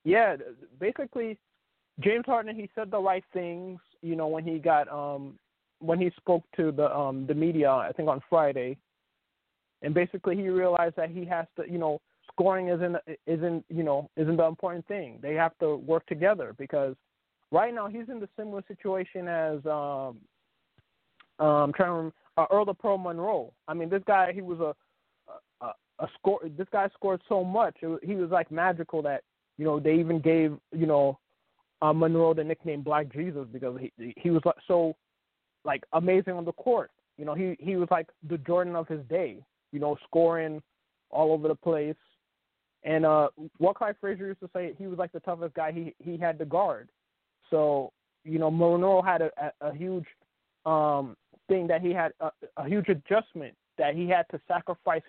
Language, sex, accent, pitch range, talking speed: English, male, American, 155-185 Hz, 190 wpm